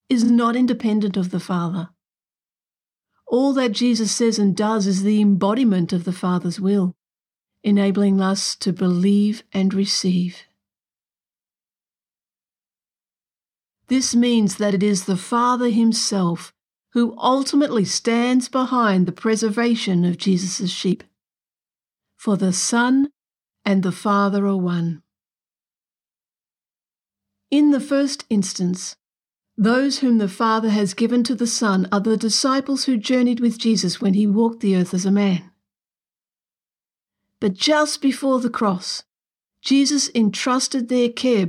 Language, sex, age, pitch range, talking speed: English, female, 50-69, 190-240 Hz, 125 wpm